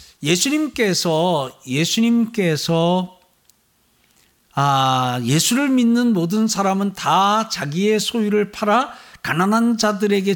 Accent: native